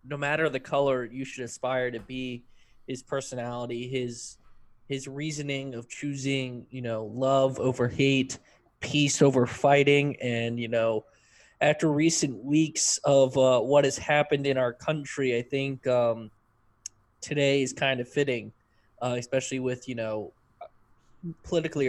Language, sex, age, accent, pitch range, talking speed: English, male, 20-39, American, 115-135 Hz, 145 wpm